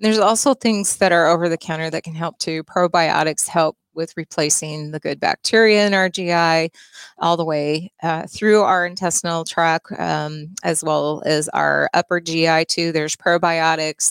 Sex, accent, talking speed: female, American, 160 wpm